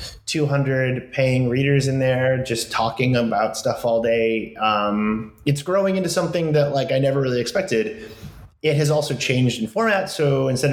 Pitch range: 110-145 Hz